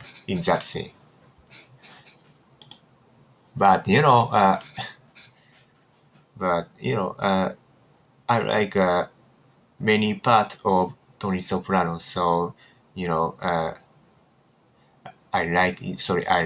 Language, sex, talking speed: English, male, 100 wpm